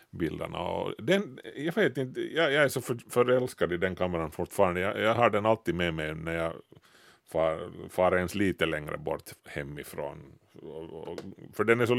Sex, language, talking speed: male, Swedish, 185 wpm